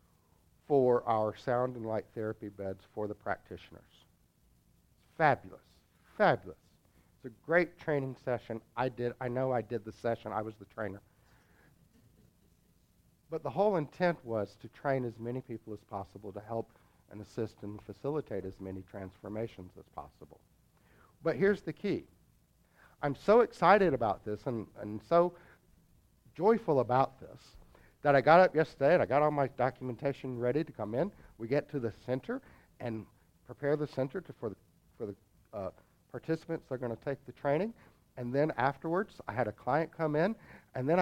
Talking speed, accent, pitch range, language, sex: 165 wpm, American, 105-160 Hz, English, male